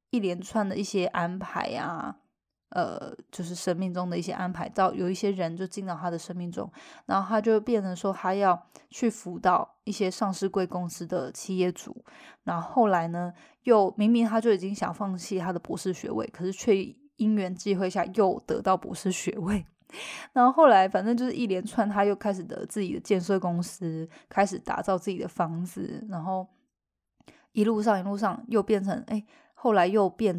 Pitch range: 180-215 Hz